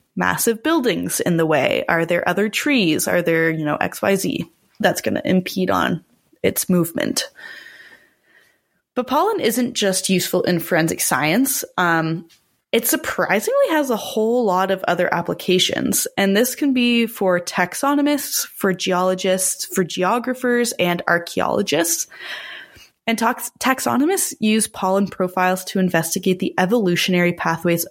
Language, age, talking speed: English, 20-39, 130 wpm